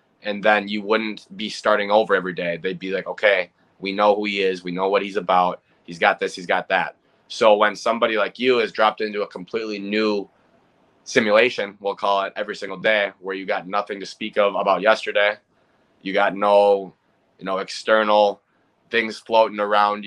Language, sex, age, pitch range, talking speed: English, male, 20-39, 100-110 Hz, 195 wpm